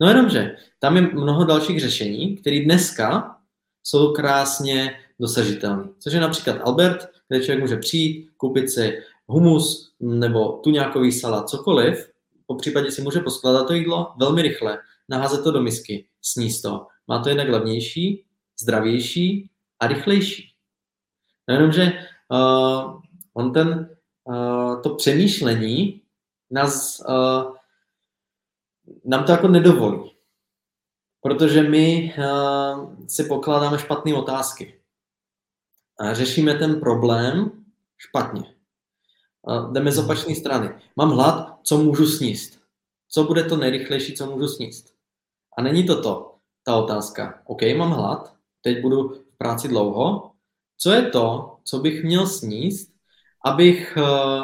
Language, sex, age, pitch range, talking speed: Czech, male, 20-39, 125-165 Hz, 120 wpm